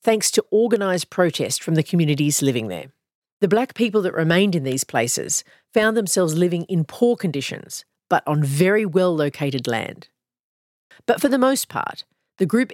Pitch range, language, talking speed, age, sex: 150-205 Hz, English, 165 wpm, 40-59, female